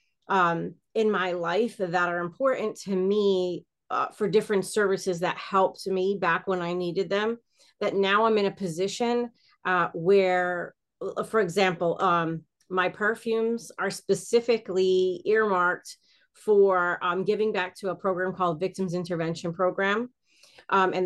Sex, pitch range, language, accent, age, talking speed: female, 180-215 Hz, English, American, 30-49, 140 wpm